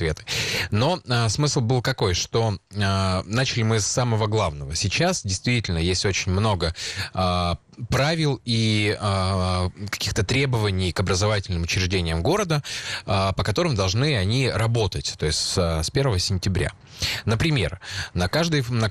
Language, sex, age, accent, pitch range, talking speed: Russian, male, 20-39, native, 90-115 Hz, 140 wpm